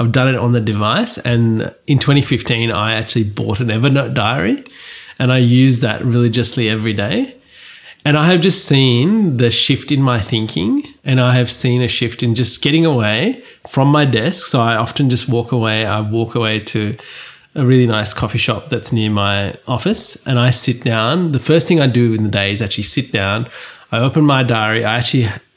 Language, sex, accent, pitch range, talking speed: English, male, Australian, 115-140 Hz, 200 wpm